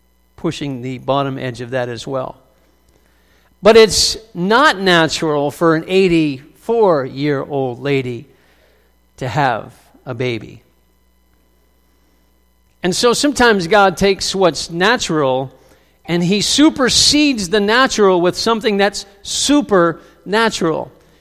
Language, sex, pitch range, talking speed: English, male, 130-205 Hz, 100 wpm